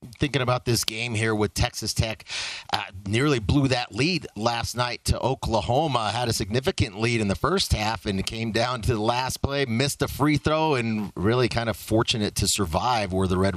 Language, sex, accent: English, male, American